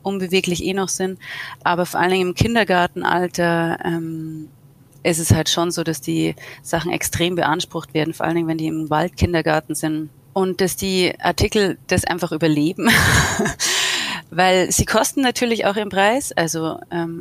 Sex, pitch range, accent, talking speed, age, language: female, 165-195 Hz, German, 160 wpm, 30-49, German